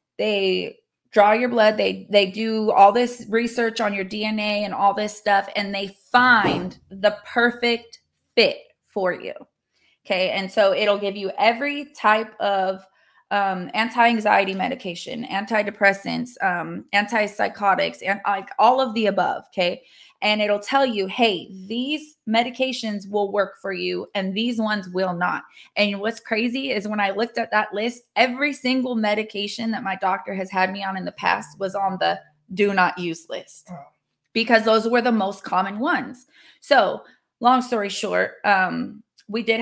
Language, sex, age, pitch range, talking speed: English, female, 20-39, 195-230 Hz, 165 wpm